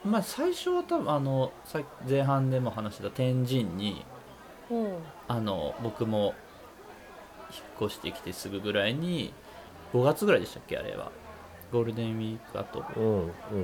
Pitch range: 105-160 Hz